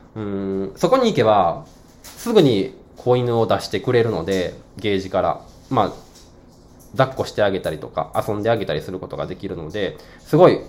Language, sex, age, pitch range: Japanese, male, 20-39, 95-145 Hz